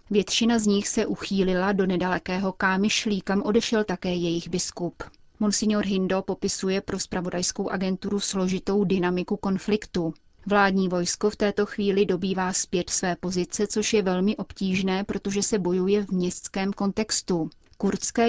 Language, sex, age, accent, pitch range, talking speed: Czech, female, 30-49, native, 180-205 Hz, 140 wpm